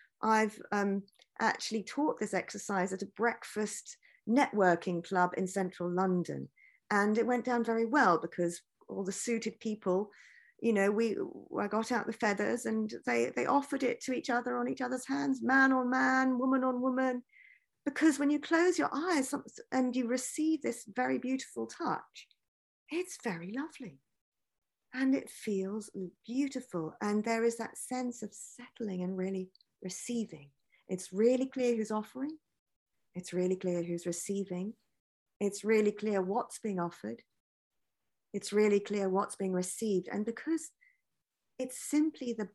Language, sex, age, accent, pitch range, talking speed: English, female, 40-59, British, 185-255 Hz, 150 wpm